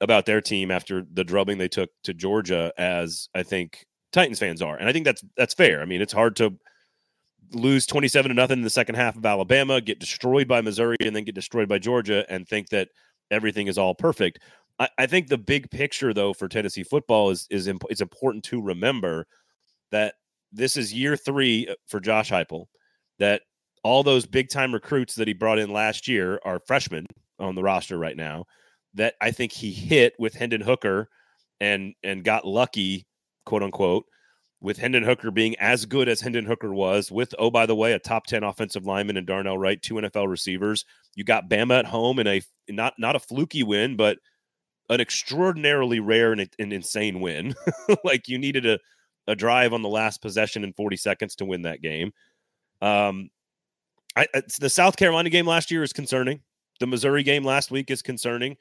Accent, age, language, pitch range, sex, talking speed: American, 30-49, English, 100-130 Hz, male, 195 wpm